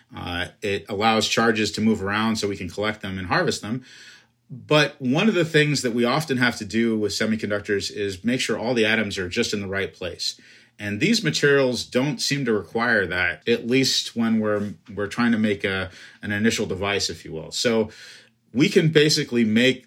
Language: English